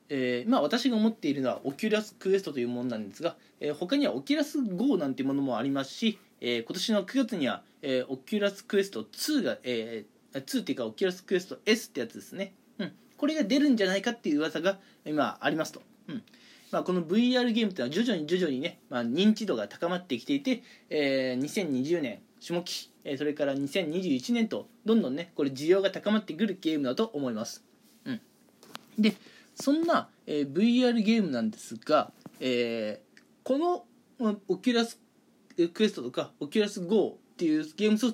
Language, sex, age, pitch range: Japanese, male, 20-39, 155-250 Hz